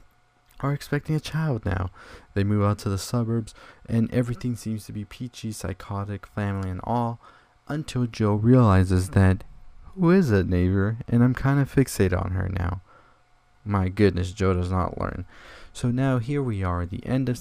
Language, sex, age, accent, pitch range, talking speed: English, male, 20-39, American, 90-110 Hz, 175 wpm